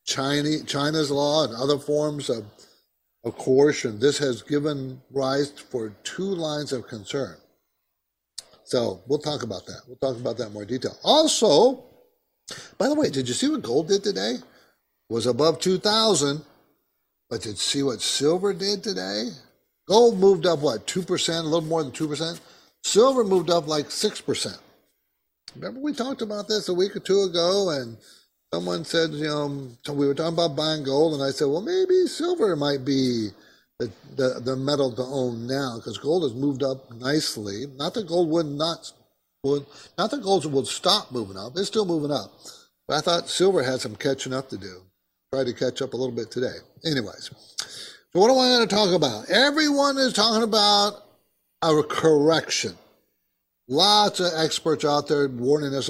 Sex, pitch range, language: male, 135-190 Hz, English